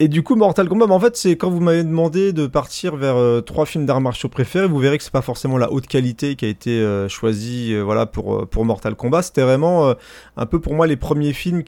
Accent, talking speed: French, 265 wpm